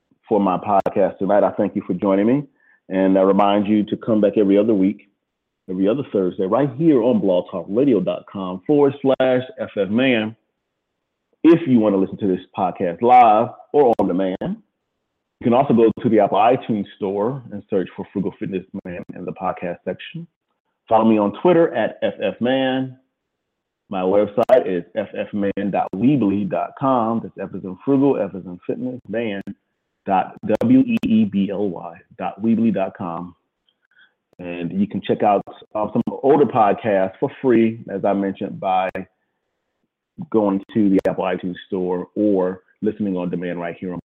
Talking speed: 155 wpm